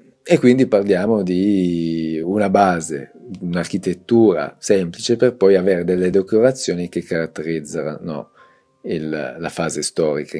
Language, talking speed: Italian, 105 wpm